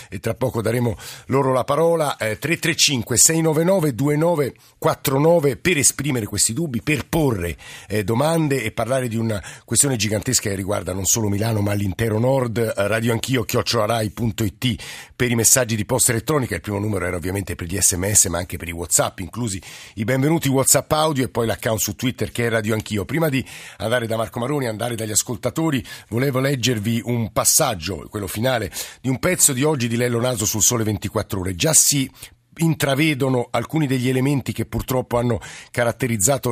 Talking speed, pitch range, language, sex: 170 wpm, 110-135 Hz, Italian, male